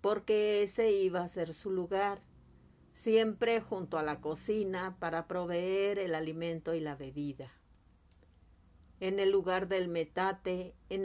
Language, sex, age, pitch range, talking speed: Spanish, female, 50-69, 140-190 Hz, 135 wpm